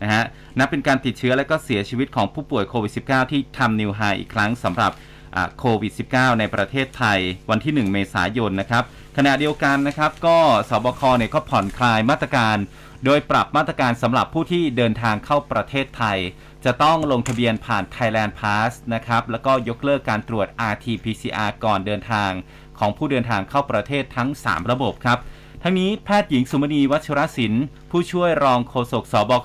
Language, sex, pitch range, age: Thai, male, 110-140 Hz, 30-49